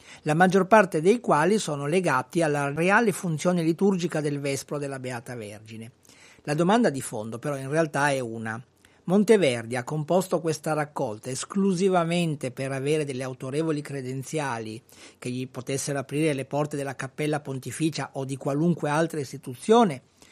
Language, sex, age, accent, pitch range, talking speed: Italian, male, 50-69, native, 130-170 Hz, 150 wpm